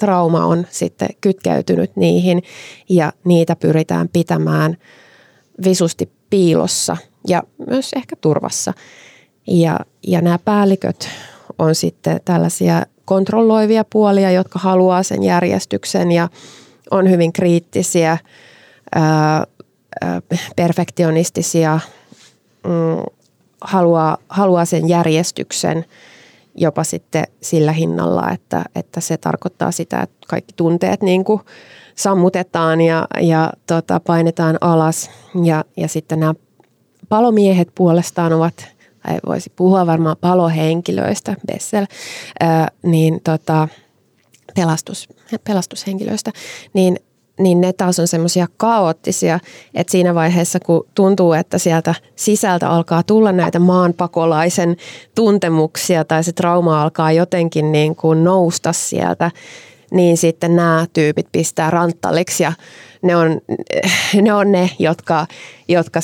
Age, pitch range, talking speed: 20-39, 160-185 Hz, 95 wpm